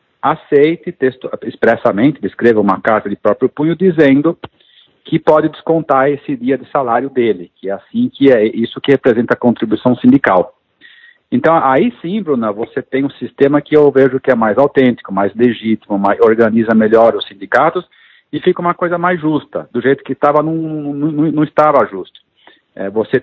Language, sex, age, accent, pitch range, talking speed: Portuguese, male, 50-69, Brazilian, 125-170 Hz, 170 wpm